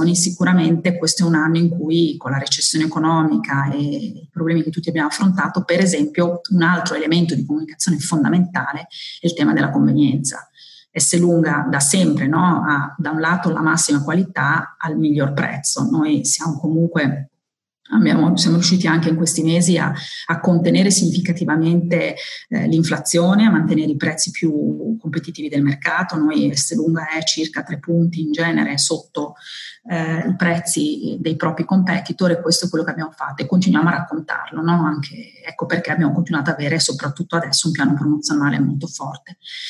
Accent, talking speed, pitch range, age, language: native, 165 wpm, 155-175 Hz, 30-49, Italian